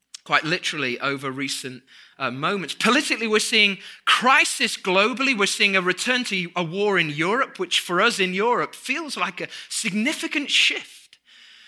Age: 20-39